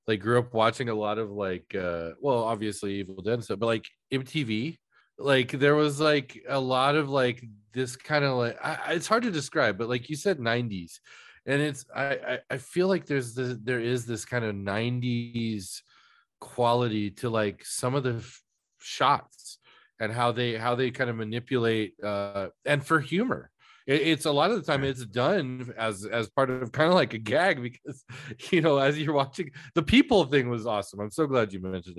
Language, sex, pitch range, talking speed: English, male, 105-140 Hz, 200 wpm